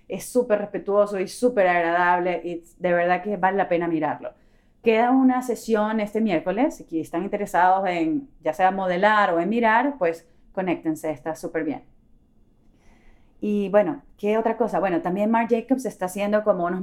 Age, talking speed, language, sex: 30-49, 170 wpm, English, female